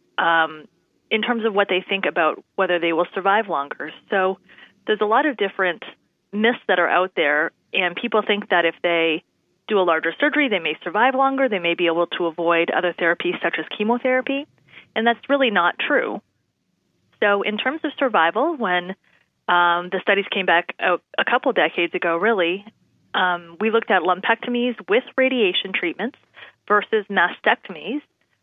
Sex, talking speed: female, 170 wpm